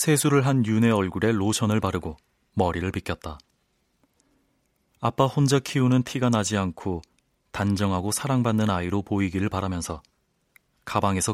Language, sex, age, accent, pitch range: Korean, male, 30-49, native, 90-115 Hz